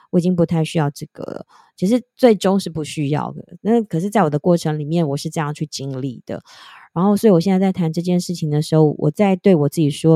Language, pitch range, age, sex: Chinese, 150-185 Hz, 20-39, female